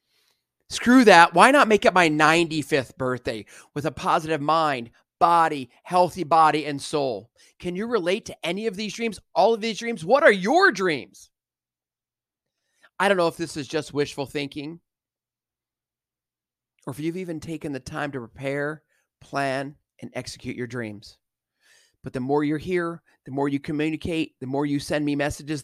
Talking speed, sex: 170 wpm, male